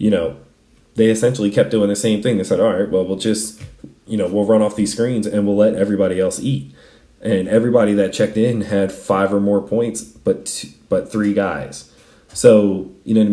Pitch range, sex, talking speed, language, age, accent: 90-110 Hz, male, 215 wpm, English, 30-49, American